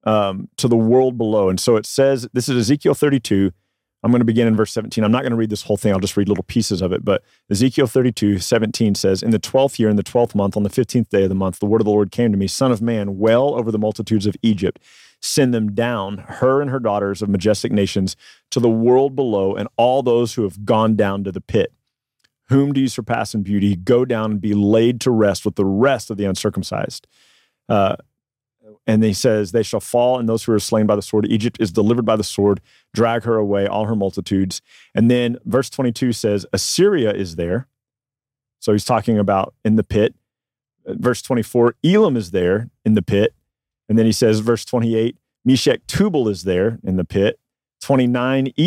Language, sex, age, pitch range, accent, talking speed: English, male, 40-59, 100-125 Hz, American, 220 wpm